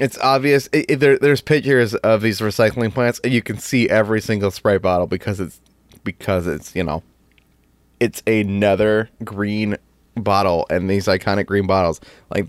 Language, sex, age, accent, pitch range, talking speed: English, male, 20-39, American, 95-120 Hz, 170 wpm